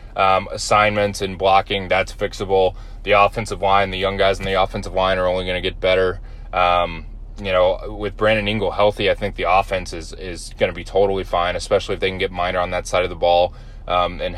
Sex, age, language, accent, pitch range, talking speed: male, 20-39, English, American, 90-105 Hz, 225 wpm